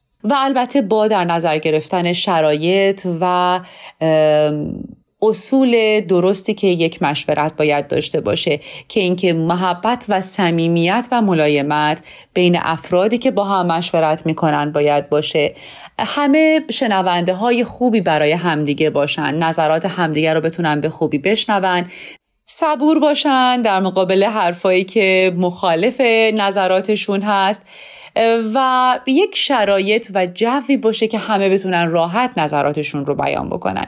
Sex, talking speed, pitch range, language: female, 120 wpm, 165-225 Hz, Persian